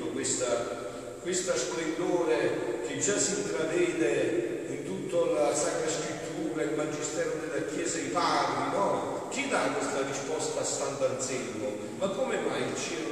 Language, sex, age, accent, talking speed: Italian, male, 40-59, native, 140 wpm